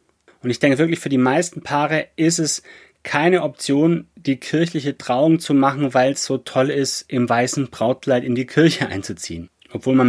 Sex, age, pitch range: male, 30-49, 125-160 Hz